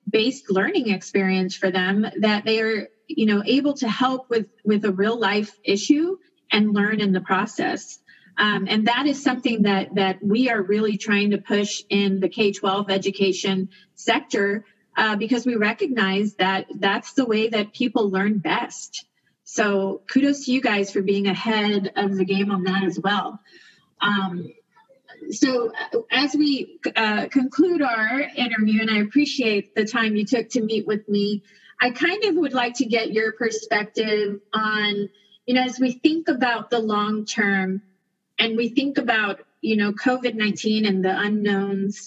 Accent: American